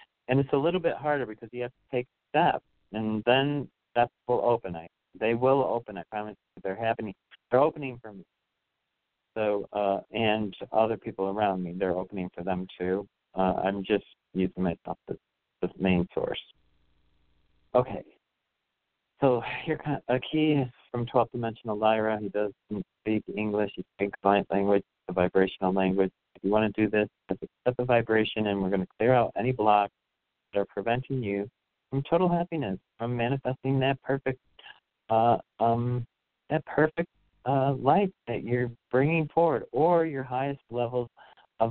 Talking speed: 160 wpm